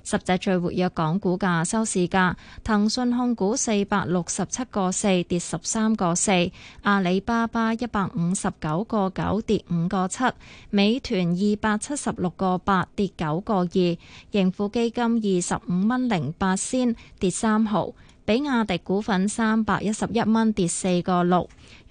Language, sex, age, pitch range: Chinese, female, 20-39, 180-225 Hz